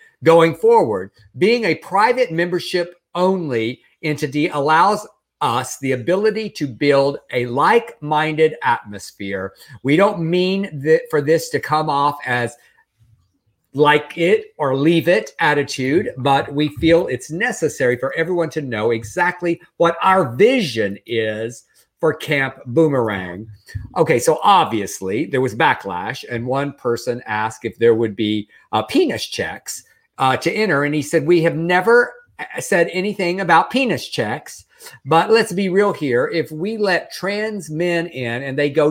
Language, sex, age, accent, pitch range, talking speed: English, male, 50-69, American, 125-180 Hz, 150 wpm